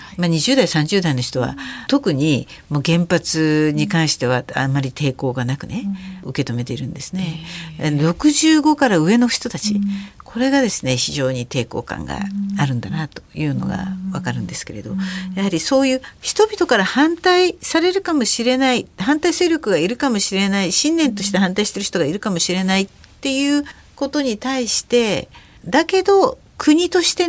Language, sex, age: Japanese, female, 60-79